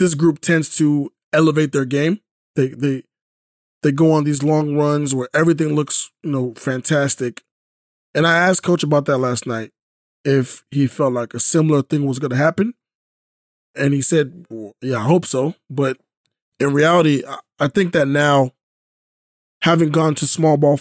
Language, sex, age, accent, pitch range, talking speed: English, male, 20-39, American, 130-160 Hz, 175 wpm